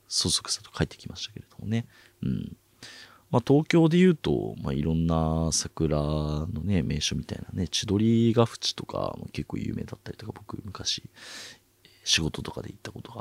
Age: 40-59